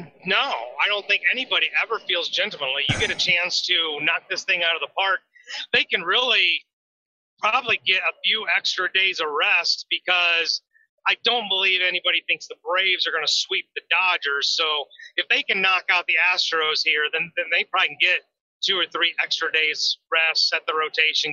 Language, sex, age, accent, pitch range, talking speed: English, male, 30-49, American, 180-245 Hz, 195 wpm